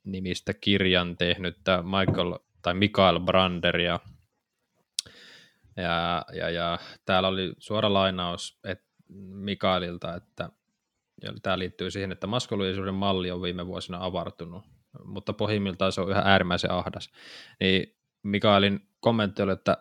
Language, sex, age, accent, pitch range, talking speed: Finnish, male, 20-39, native, 95-110 Hz, 110 wpm